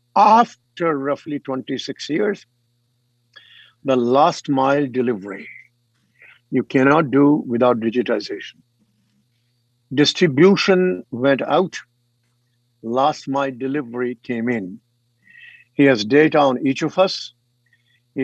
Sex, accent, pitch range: male, Indian, 120-150 Hz